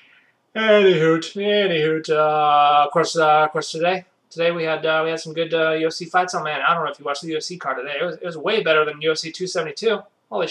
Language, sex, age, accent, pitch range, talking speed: English, male, 20-39, American, 155-195 Hz, 255 wpm